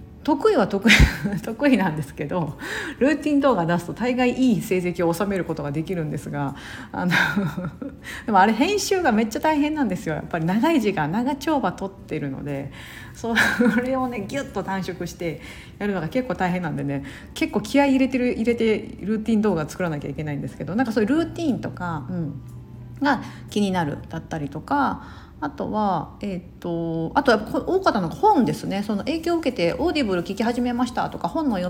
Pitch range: 160-245 Hz